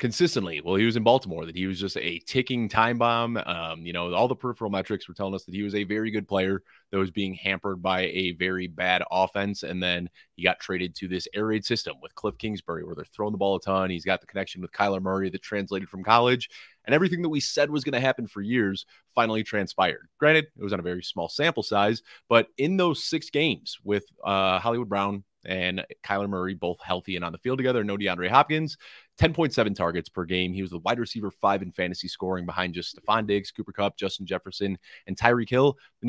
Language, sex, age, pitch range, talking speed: English, male, 30-49, 95-115 Hz, 235 wpm